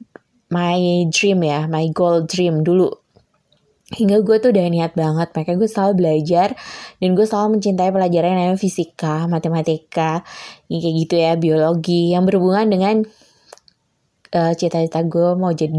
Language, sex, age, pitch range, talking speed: Indonesian, female, 20-39, 170-215 Hz, 145 wpm